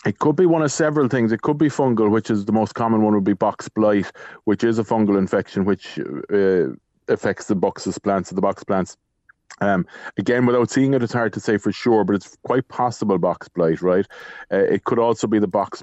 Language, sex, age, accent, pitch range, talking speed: English, male, 30-49, Irish, 100-120 Hz, 230 wpm